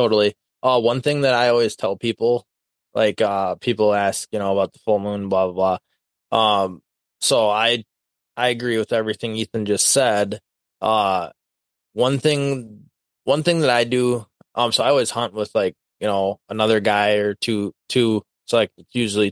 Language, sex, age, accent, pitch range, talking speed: English, male, 20-39, American, 105-120 Hz, 175 wpm